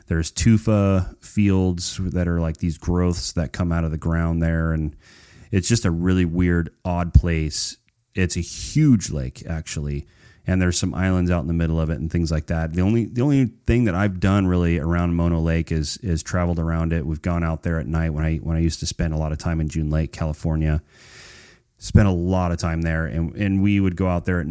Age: 30-49